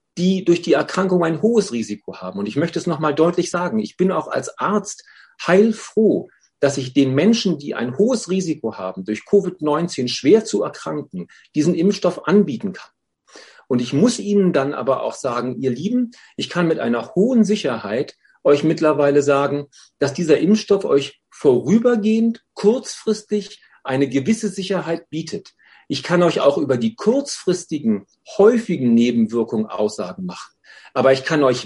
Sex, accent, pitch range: male, German, 135-200 Hz